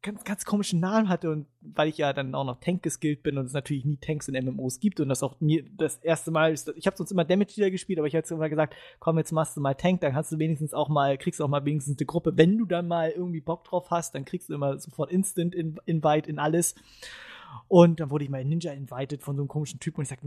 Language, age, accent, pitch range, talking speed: English, 20-39, German, 145-180 Hz, 280 wpm